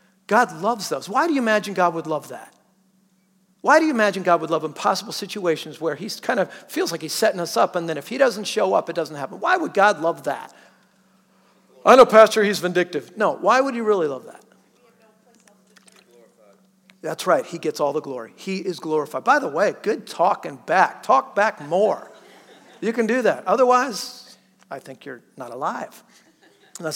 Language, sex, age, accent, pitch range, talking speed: English, male, 50-69, American, 180-240 Hz, 195 wpm